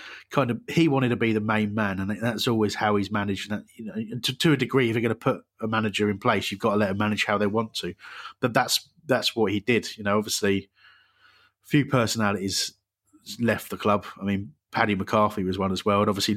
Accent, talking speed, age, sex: British, 245 wpm, 30-49, male